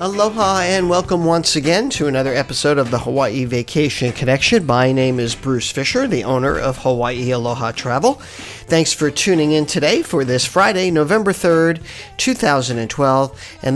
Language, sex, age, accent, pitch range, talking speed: English, male, 50-69, American, 130-170 Hz, 155 wpm